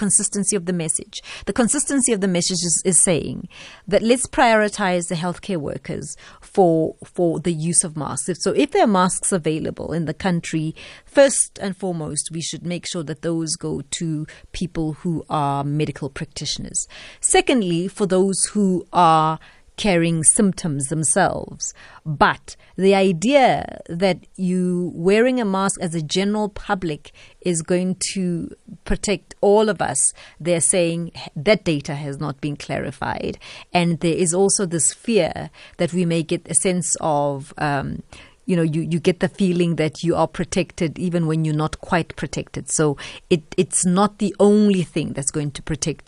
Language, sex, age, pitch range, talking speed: English, female, 30-49, 155-190 Hz, 165 wpm